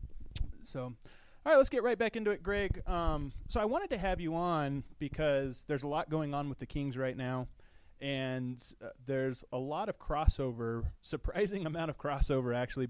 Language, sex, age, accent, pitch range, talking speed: English, male, 20-39, American, 120-150 Hz, 190 wpm